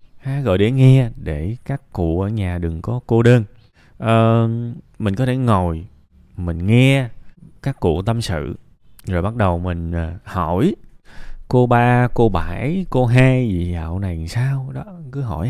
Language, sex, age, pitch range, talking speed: Vietnamese, male, 20-39, 95-130 Hz, 165 wpm